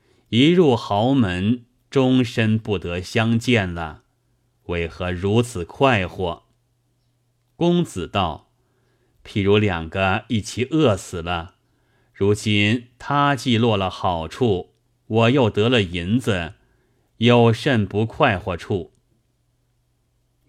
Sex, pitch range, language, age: male, 100-125 Hz, Chinese, 30-49